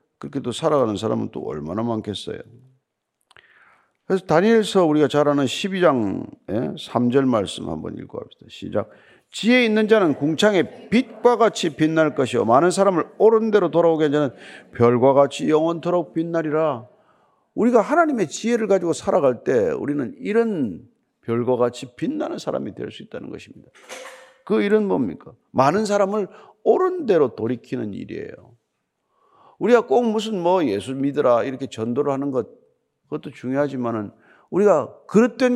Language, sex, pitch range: Korean, male, 140-225 Hz